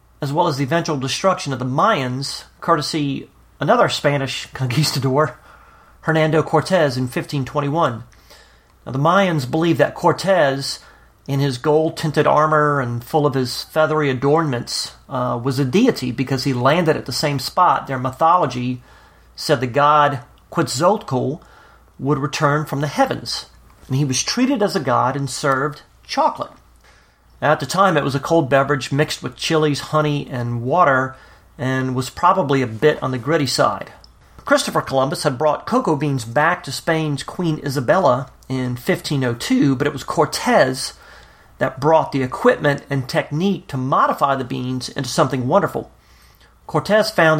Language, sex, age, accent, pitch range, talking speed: English, male, 40-59, American, 130-155 Hz, 150 wpm